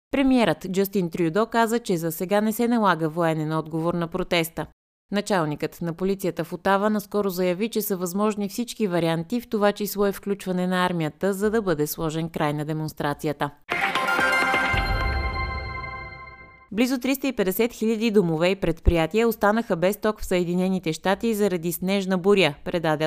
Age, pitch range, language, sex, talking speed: 20-39, 160-210 Hz, Bulgarian, female, 145 wpm